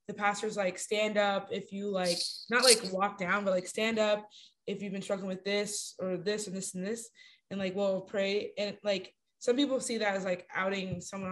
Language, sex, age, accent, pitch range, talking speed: English, female, 20-39, American, 190-225 Hz, 225 wpm